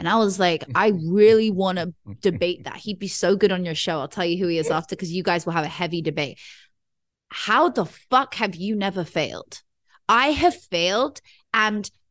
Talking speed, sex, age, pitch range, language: 215 wpm, female, 20-39, 210-315 Hz, English